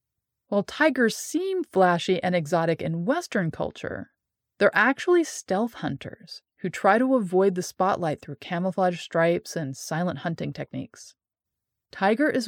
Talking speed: 135 wpm